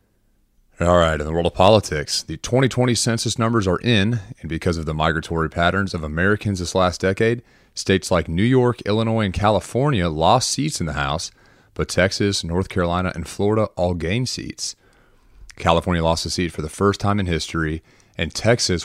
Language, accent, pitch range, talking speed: English, American, 80-105 Hz, 180 wpm